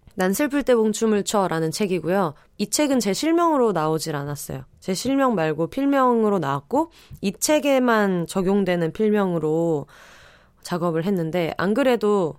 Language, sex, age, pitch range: Korean, female, 20-39, 160-230 Hz